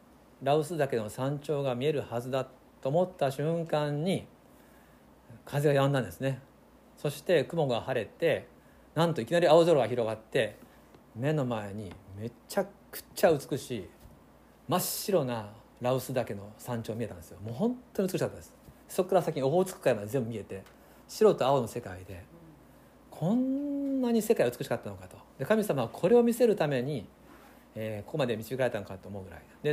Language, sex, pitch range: Japanese, male, 115-180 Hz